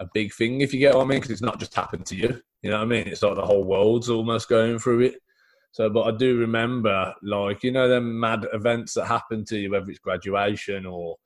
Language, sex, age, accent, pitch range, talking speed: English, male, 20-39, British, 95-115 Hz, 260 wpm